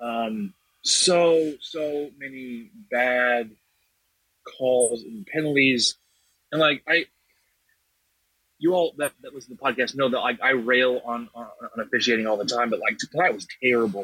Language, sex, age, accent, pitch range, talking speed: English, male, 30-49, American, 120-150 Hz, 160 wpm